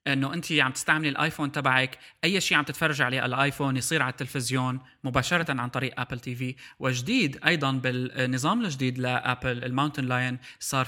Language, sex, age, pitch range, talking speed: Arabic, male, 20-39, 130-150 Hz, 160 wpm